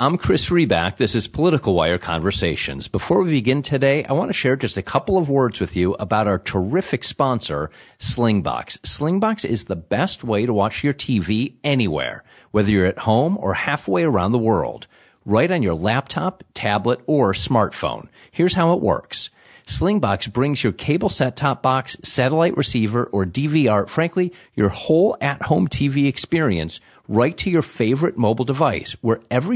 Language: English